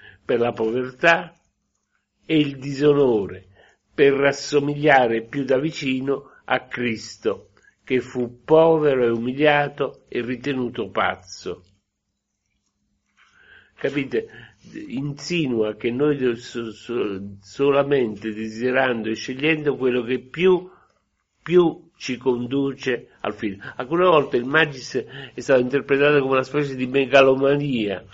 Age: 50-69